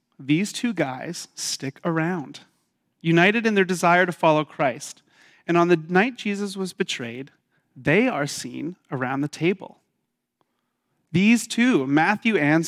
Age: 30-49